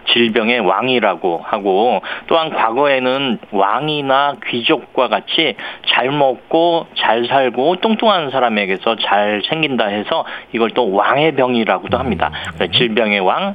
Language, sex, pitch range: Korean, male, 115-165 Hz